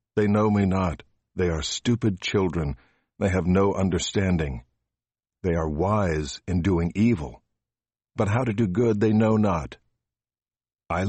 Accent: American